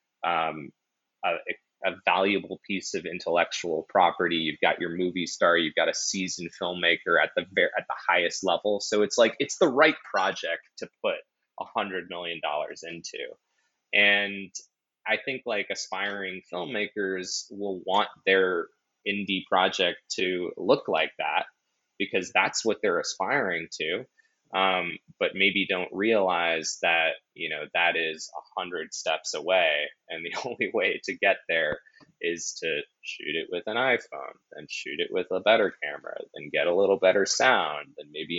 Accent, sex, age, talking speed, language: American, male, 20-39, 160 wpm, English